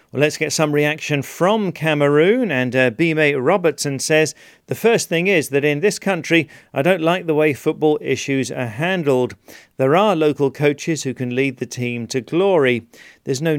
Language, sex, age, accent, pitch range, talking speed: English, male, 40-59, British, 130-165 Hz, 180 wpm